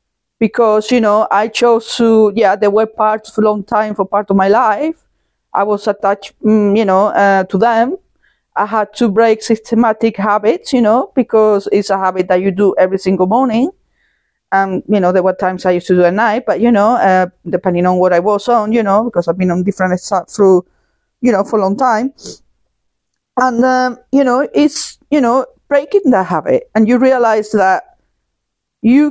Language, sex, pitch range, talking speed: English, female, 190-235 Hz, 200 wpm